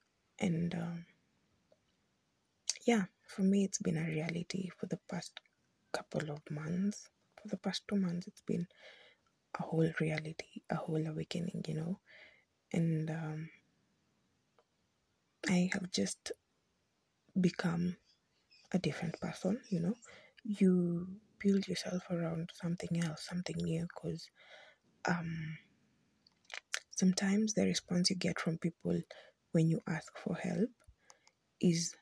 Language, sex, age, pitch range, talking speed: English, female, 20-39, 165-190 Hz, 120 wpm